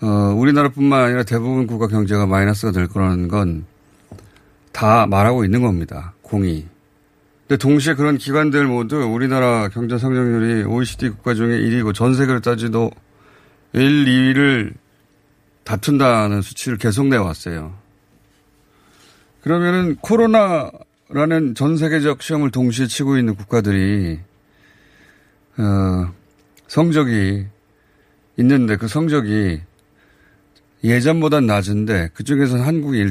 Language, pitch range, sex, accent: Korean, 100-145 Hz, male, native